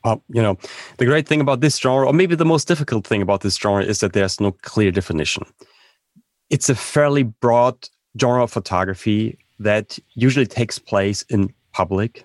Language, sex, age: English, male, 30-49